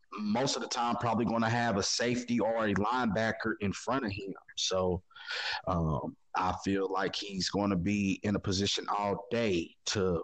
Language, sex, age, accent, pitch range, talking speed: English, male, 30-49, American, 105-130 Hz, 190 wpm